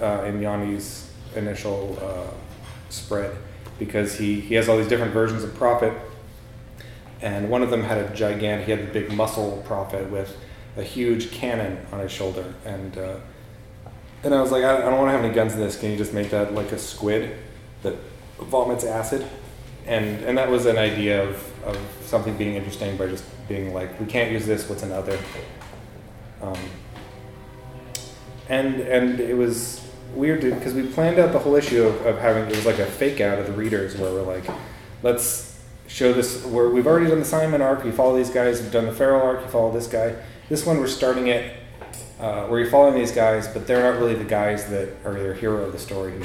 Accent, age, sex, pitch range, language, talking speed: American, 30-49, male, 105-125 Hz, English, 205 wpm